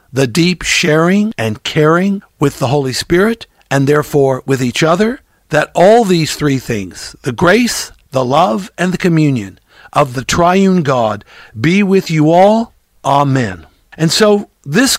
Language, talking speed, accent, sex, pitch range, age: English, 150 wpm, American, male, 130-180 Hz, 60-79